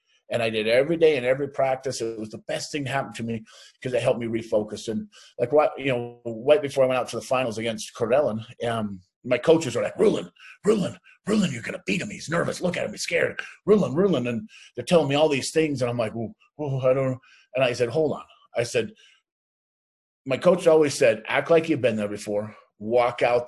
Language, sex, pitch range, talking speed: English, male, 115-150 Hz, 235 wpm